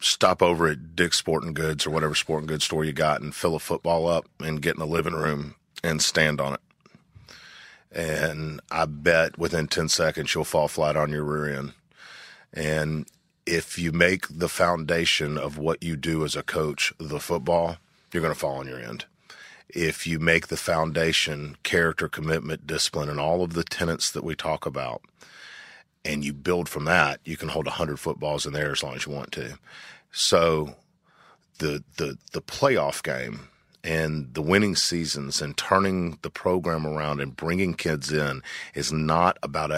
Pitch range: 75-85 Hz